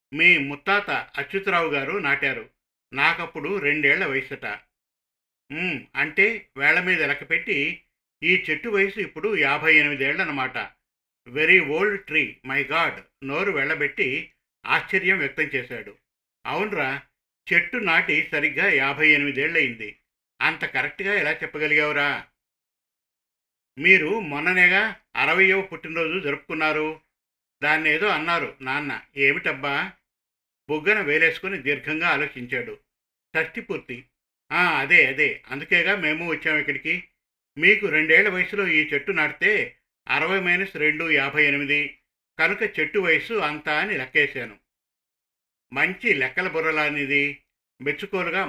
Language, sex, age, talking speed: Telugu, male, 50-69, 100 wpm